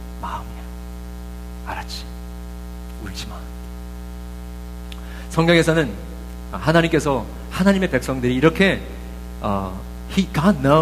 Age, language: 40-59, Korean